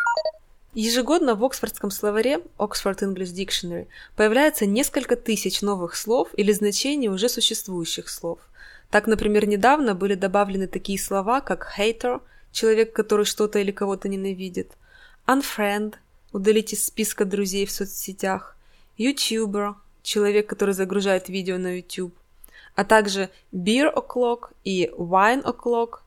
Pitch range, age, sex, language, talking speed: 195-240 Hz, 20-39, female, Russian, 120 wpm